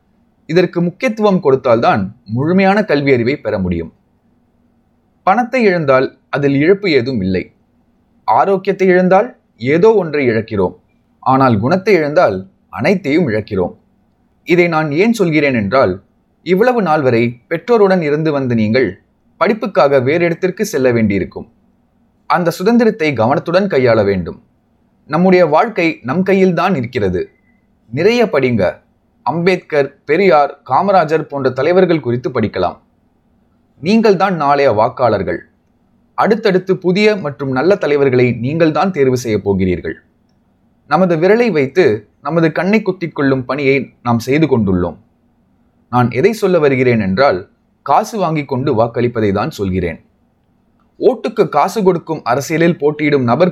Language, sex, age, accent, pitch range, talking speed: Tamil, male, 20-39, native, 125-190 Hz, 80 wpm